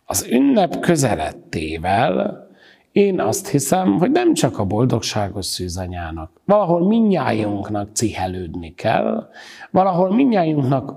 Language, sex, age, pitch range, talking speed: Hungarian, male, 60-79, 140-205 Hz, 100 wpm